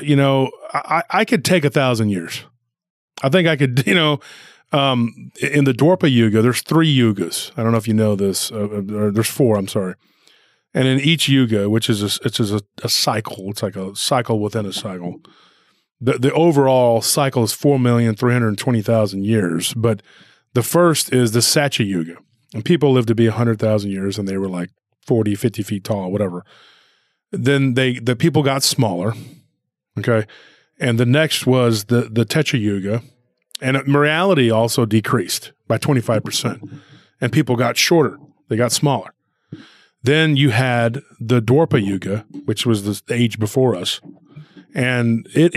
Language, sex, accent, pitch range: English, male, American, 110-135 Hz